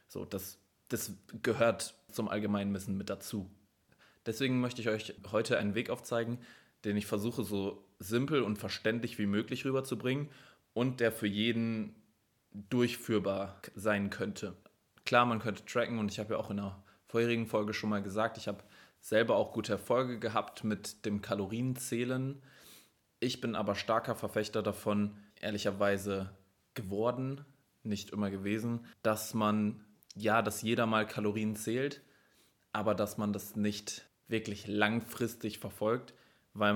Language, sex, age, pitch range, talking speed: German, male, 20-39, 105-115 Hz, 145 wpm